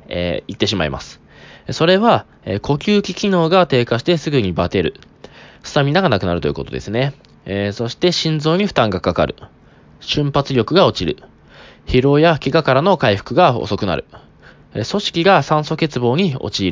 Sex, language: male, Japanese